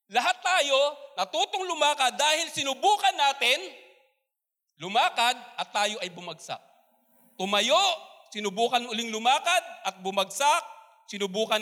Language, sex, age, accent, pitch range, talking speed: Filipino, male, 40-59, native, 185-300 Hz, 95 wpm